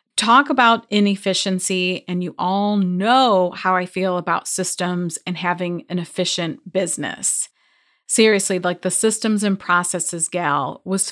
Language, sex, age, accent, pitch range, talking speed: English, female, 30-49, American, 180-245 Hz, 135 wpm